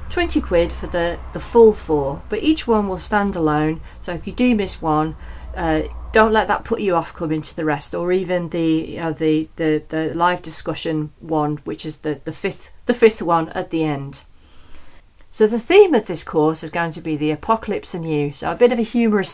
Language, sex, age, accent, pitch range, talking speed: English, female, 40-59, British, 155-215 Hz, 220 wpm